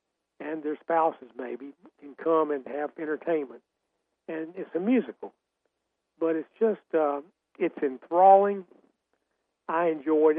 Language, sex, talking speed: English, male, 120 wpm